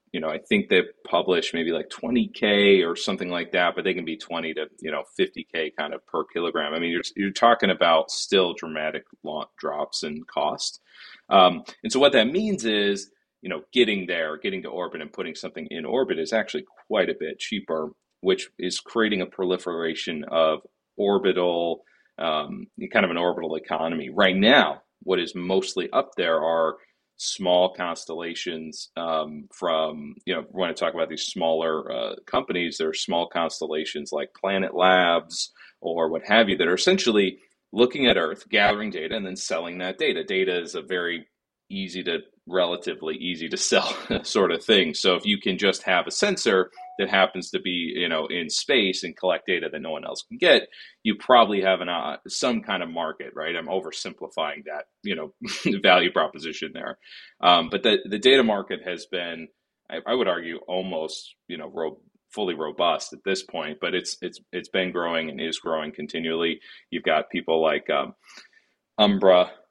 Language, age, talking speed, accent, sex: English, 30-49, 185 wpm, American, male